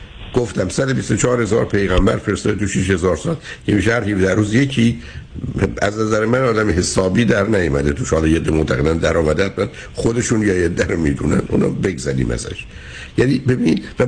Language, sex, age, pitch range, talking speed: Persian, male, 60-79, 75-115 Hz, 150 wpm